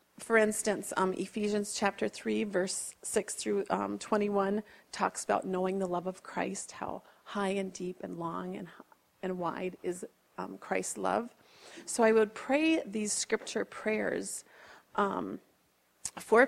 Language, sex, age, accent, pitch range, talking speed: English, female, 40-59, American, 190-225 Hz, 145 wpm